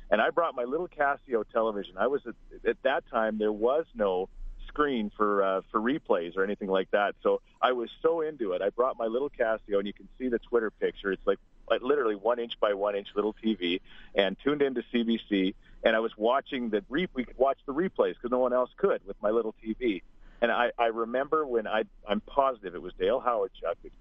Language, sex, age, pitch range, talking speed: English, male, 40-59, 105-145 Hz, 230 wpm